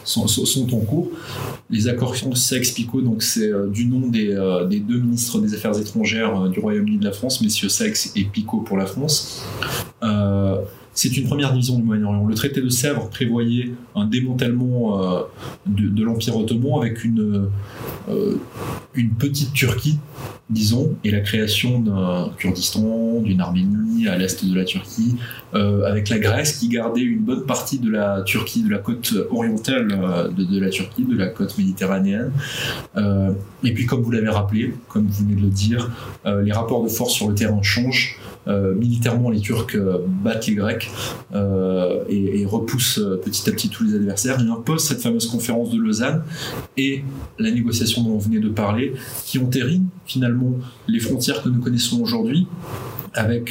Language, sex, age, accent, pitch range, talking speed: French, male, 20-39, French, 105-130 Hz, 180 wpm